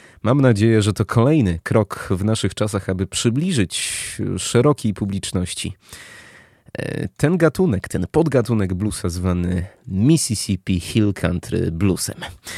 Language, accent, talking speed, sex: Polish, native, 110 wpm, male